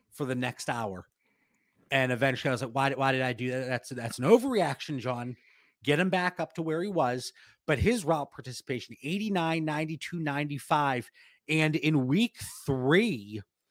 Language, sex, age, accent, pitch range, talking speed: English, male, 30-49, American, 135-170 Hz, 170 wpm